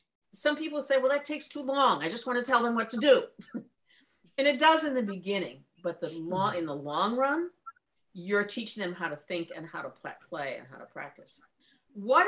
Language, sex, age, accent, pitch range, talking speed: English, female, 50-69, American, 180-280 Hz, 220 wpm